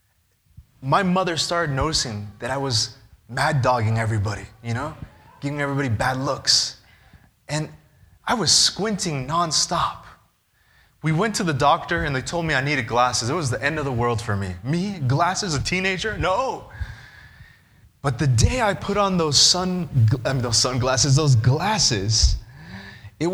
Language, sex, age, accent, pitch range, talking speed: English, male, 20-39, American, 125-170 Hz, 150 wpm